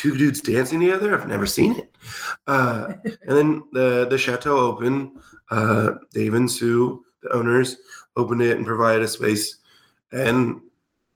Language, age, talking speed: English, 20-39, 150 wpm